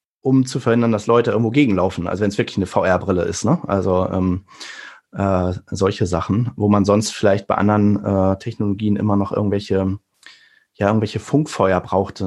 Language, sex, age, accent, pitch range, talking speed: German, male, 30-49, German, 100-115 Hz, 170 wpm